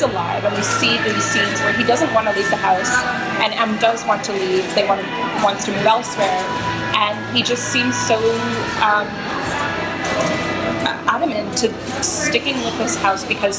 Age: 20-39